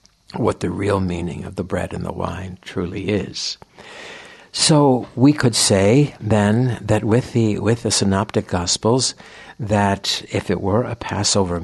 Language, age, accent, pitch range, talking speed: English, 60-79, American, 95-110 Hz, 155 wpm